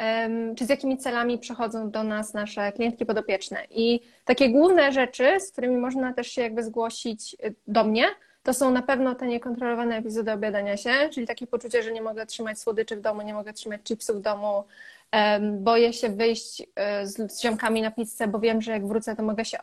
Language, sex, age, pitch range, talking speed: Polish, female, 20-39, 210-245 Hz, 195 wpm